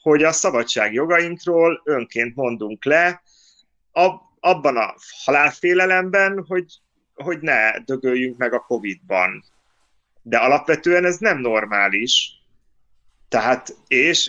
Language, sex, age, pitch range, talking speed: Hungarian, male, 30-49, 120-170 Hz, 100 wpm